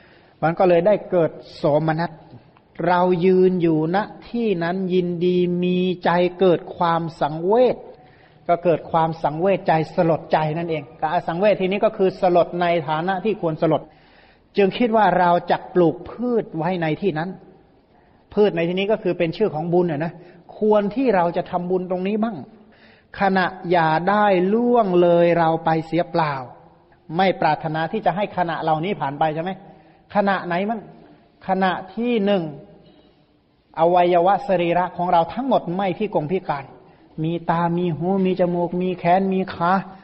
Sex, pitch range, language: male, 165-195 Hz, Thai